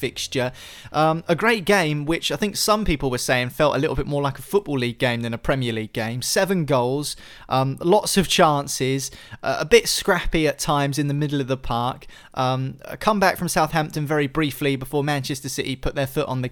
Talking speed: 220 wpm